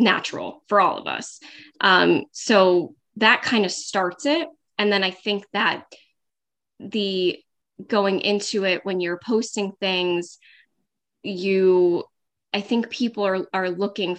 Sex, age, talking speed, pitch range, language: female, 20-39, 135 wpm, 180-225 Hz, English